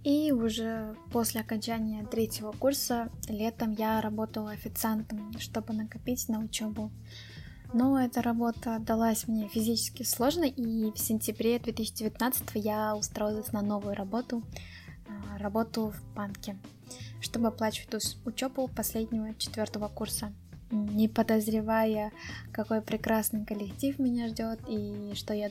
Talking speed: 115 wpm